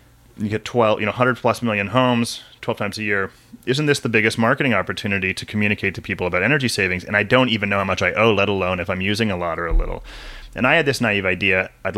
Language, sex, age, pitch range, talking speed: English, male, 30-49, 95-115 Hz, 260 wpm